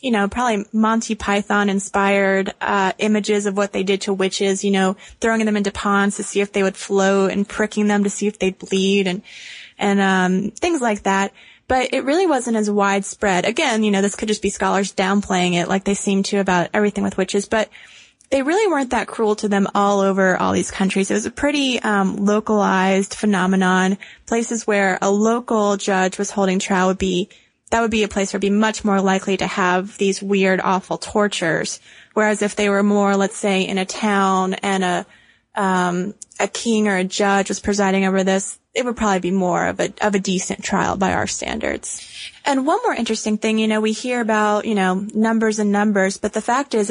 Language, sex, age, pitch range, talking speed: English, female, 20-39, 195-215 Hz, 215 wpm